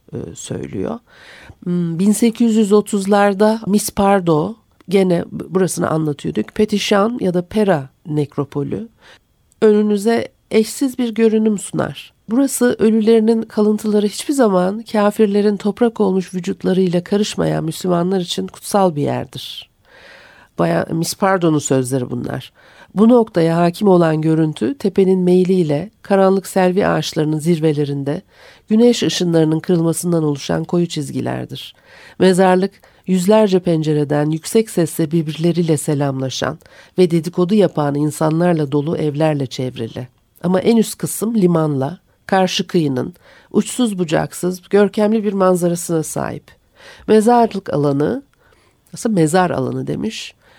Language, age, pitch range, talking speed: Turkish, 60-79, 160-210 Hz, 105 wpm